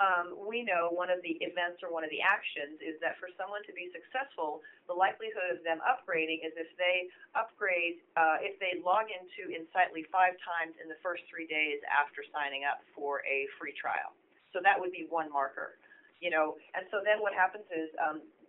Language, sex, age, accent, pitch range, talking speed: English, female, 30-49, American, 155-190 Hz, 205 wpm